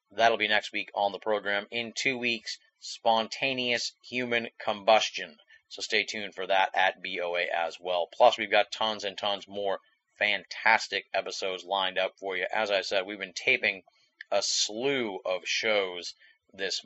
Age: 30-49